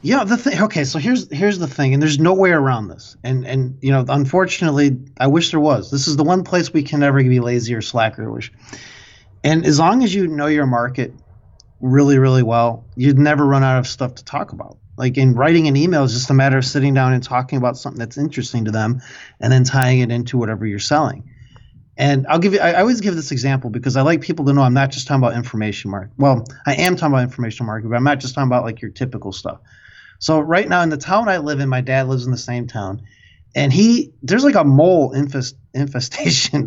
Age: 30-49